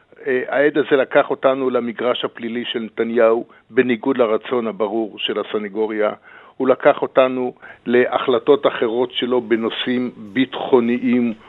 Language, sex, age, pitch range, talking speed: Hebrew, male, 50-69, 120-140 Hz, 110 wpm